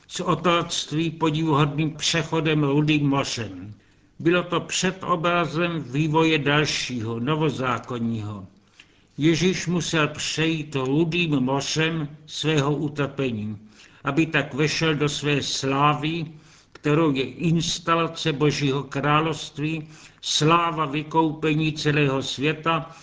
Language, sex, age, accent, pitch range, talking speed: Czech, male, 60-79, native, 140-160 Hz, 90 wpm